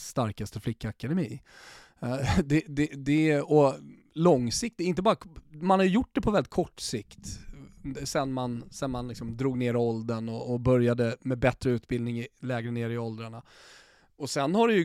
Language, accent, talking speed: Swedish, native, 160 wpm